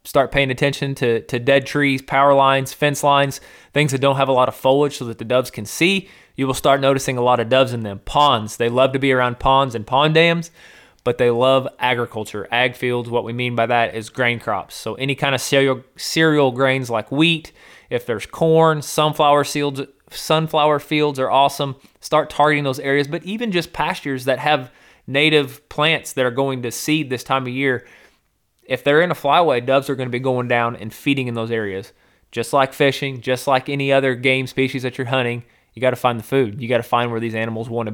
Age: 20-39